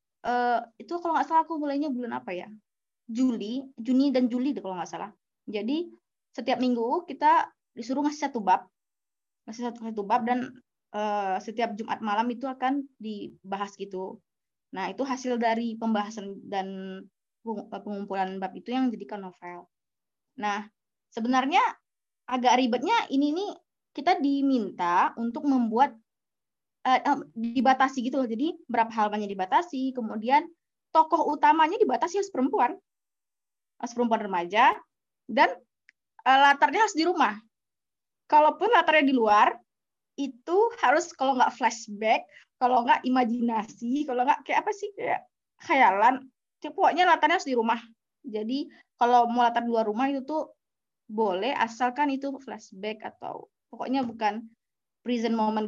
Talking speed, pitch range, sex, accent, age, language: 135 wpm, 220-285 Hz, female, native, 20-39, Indonesian